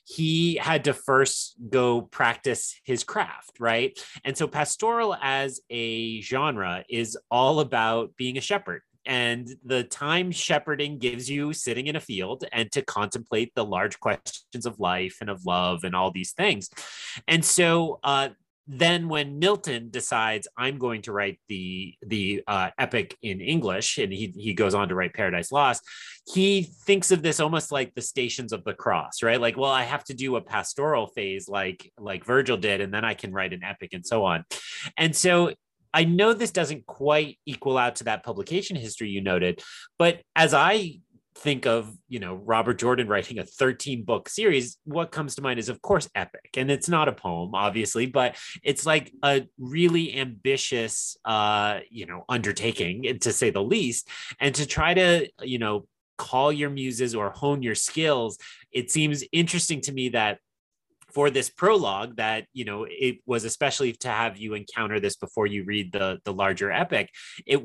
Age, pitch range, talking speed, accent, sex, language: 30-49, 110-150 Hz, 180 wpm, American, male, English